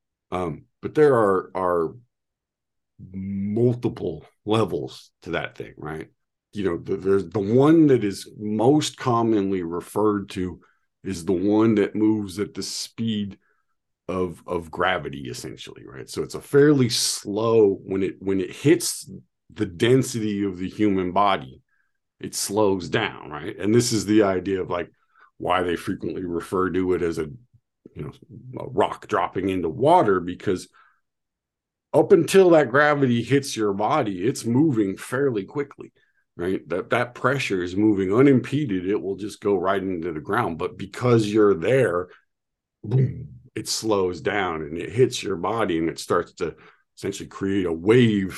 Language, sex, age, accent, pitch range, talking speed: English, male, 50-69, American, 95-120 Hz, 155 wpm